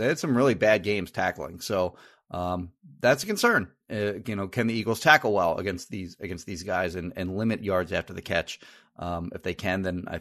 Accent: American